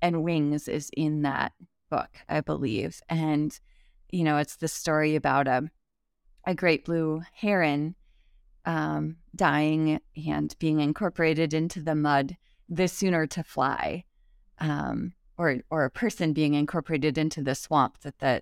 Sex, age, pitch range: female, 30-49, 150-185 Hz